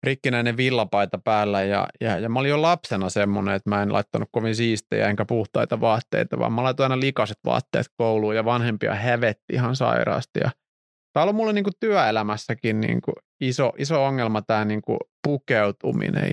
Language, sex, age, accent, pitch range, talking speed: Finnish, male, 30-49, native, 110-135 Hz, 165 wpm